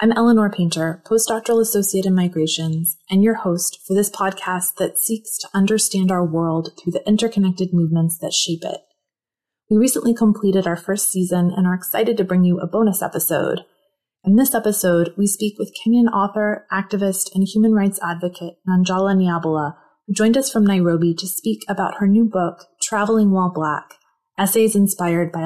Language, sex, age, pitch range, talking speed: English, female, 30-49, 175-210 Hz, 170 wpm